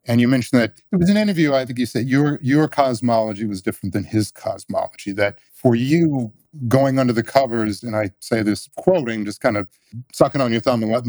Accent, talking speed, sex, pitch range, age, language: American, 220 wpm, male, 110-140 Hz, 50-69, English